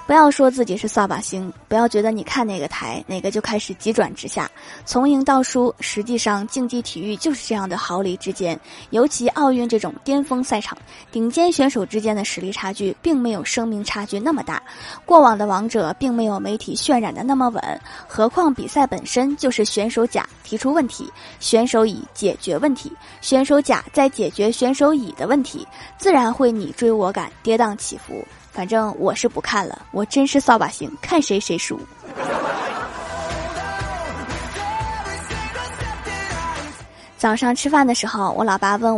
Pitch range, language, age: 210-265 Hz, Chinese, 20-39